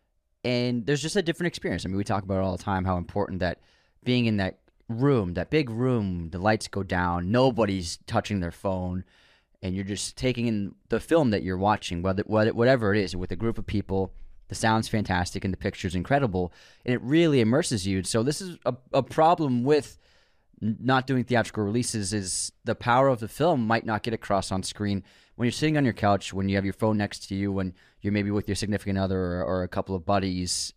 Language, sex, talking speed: English, male, 220 wpm